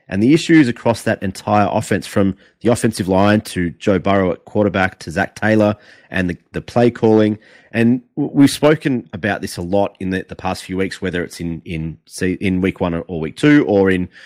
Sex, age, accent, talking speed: male, 30-49, Australian, 205 wpm